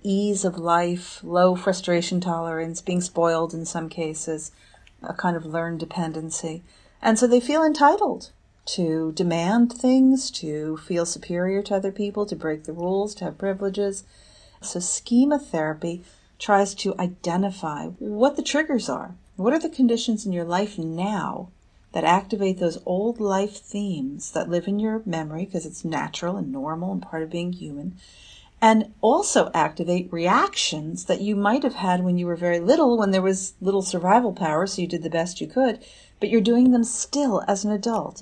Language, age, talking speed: English, 40-59, 175 wpm